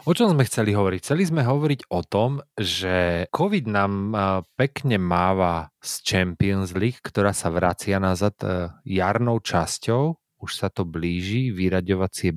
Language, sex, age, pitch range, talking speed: Slovak, male, 30-49, 90-110 Hz, 140 wpm